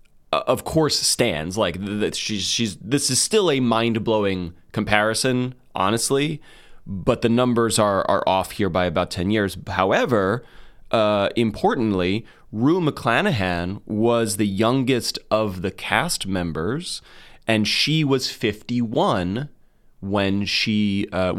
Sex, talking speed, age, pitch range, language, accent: male, 135 wpm, 30-49, 95-125 Hz, English, American